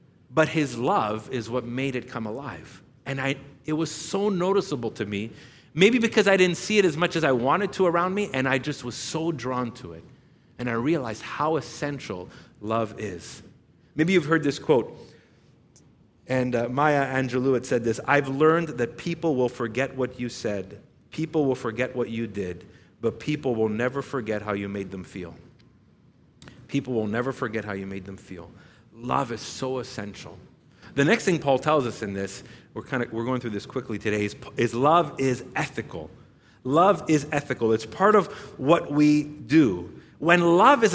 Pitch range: 120-160 Hz